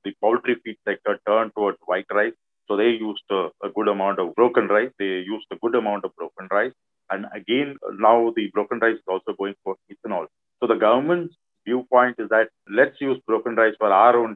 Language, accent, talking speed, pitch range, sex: English, Indian, 210 wpm, 100-125 Hz, male